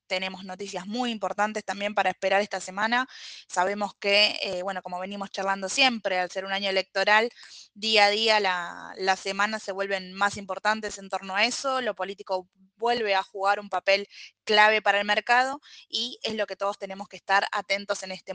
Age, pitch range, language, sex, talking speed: 20-39, 190-235 Hz, Spanish, female, 185 wpm